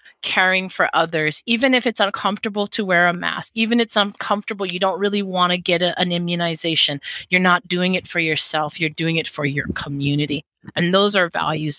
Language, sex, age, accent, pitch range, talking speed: English, female, 30-49, American, 165-210 Hz, 195 wpm